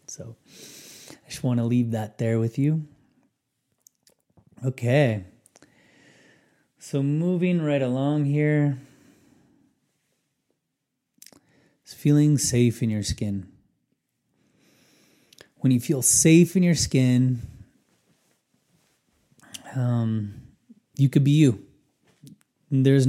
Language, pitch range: English, 115-145 Hz